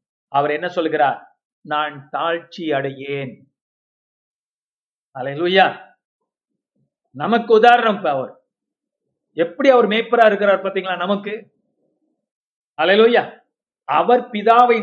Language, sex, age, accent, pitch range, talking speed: Tamil, male, 50-69, native, 170-230 Hz, 75 wpm